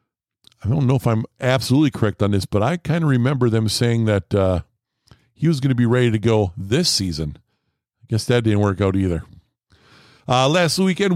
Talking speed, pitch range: 205 wpm, 115-155 Hz